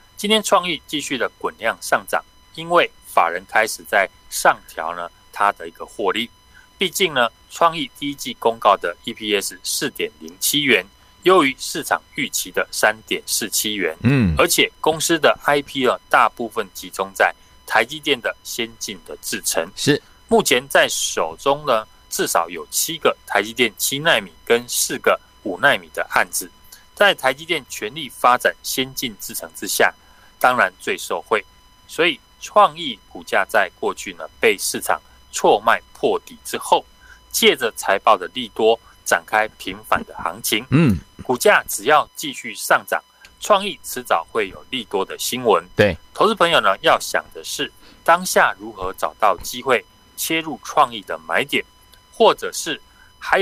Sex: male